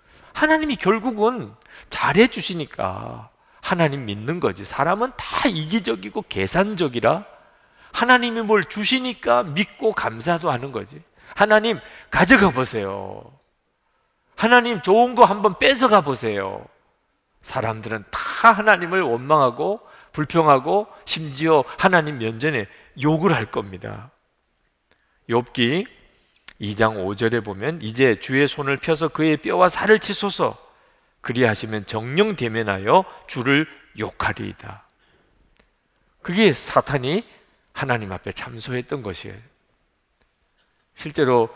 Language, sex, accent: Korean, male, native